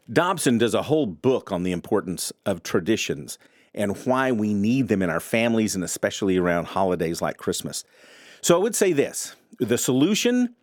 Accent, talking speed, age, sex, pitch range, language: American, 175 wpm, 40-59, male, 95-130 Hz, English